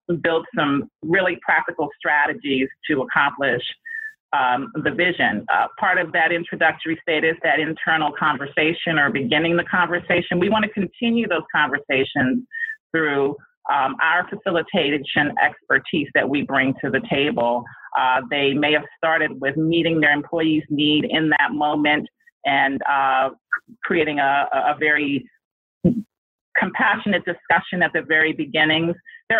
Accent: American